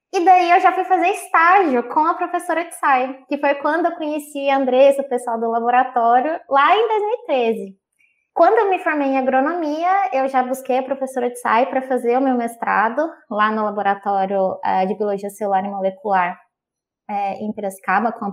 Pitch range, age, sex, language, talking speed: 240-300 Hz, 20-39, female, Portuguese, 185 wpm